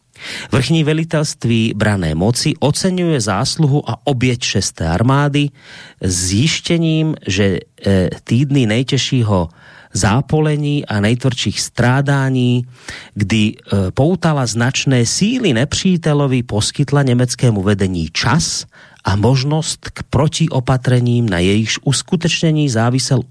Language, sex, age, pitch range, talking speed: Slovak, male, 40-59, 100-140 Hz, 95 wpm